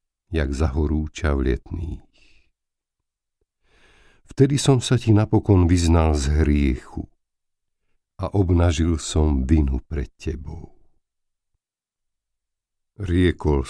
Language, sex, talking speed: Slovak, male, 85 wpm